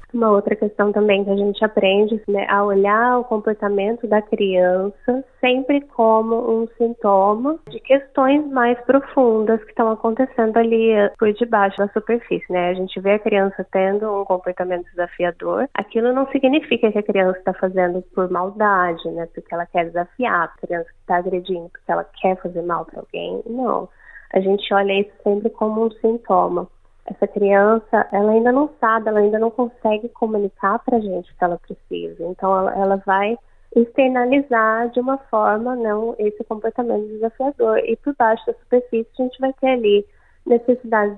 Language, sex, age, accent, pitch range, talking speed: Portuguese, female, 10-29, Brazilian, 195-235 Hz, 170 wpm